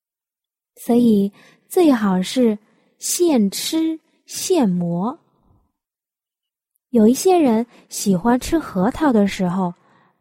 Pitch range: 195-300 Hz